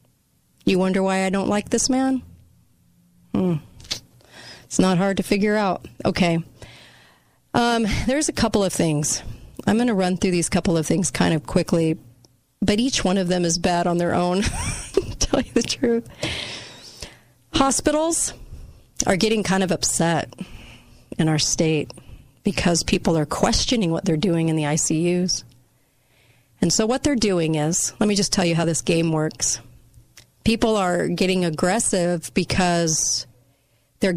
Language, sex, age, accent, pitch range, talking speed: English, female, 40-59, American, 150-200 Hz, 155 wpm